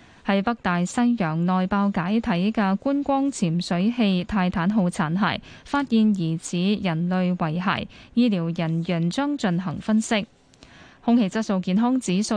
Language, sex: Chinese, female